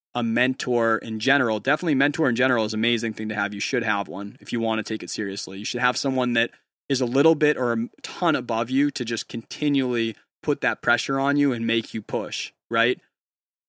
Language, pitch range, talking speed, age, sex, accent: English, 110-125 Hz, 230 wpm, 20-39, male, American